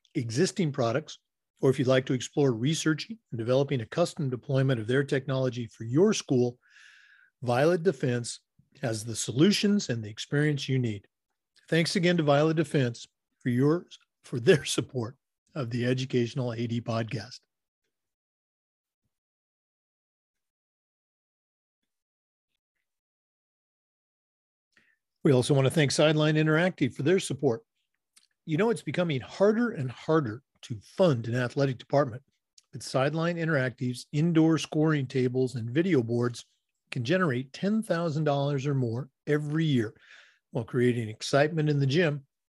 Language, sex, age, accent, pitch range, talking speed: English, male, 40-59, American, 125-155 Hz, 125 wpm